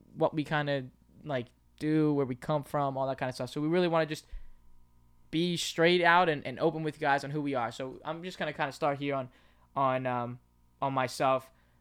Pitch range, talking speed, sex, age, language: 125-145 Hz, 245 wpm, male, 10-29, English